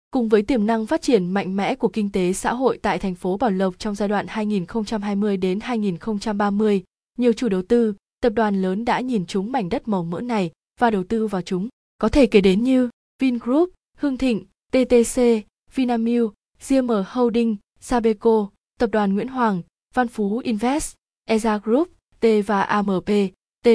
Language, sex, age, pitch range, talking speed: Vietnamese, female, 20-39, 195-235 Hz, 175 wpm